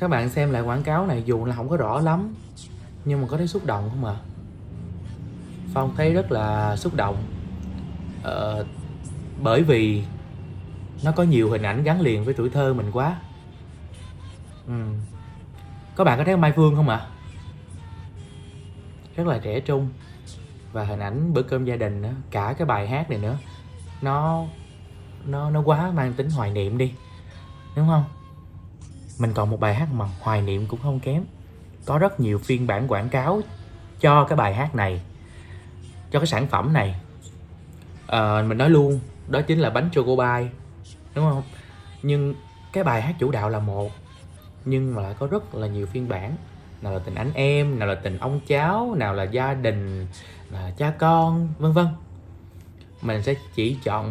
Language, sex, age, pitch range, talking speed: Vietnamese, male, 20-39, 95-140 Hz, 175 wpm